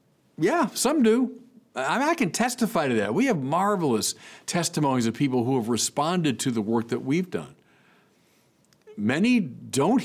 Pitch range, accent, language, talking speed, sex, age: 120-175 Hz, American, English, 155 wpm, male, 50-69